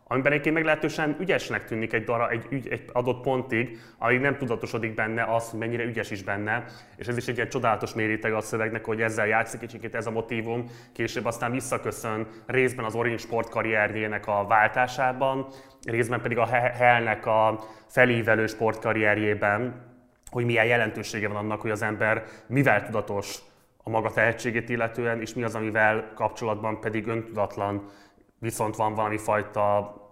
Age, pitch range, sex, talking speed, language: 20-39, 105-115 Hz, male, 155 wpm, Hungarian